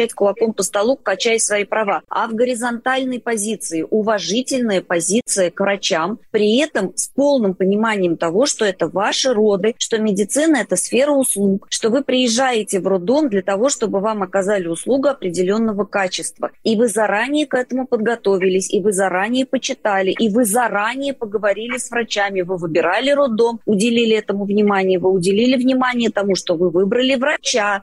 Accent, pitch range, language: native, 195-245 Hz, Russian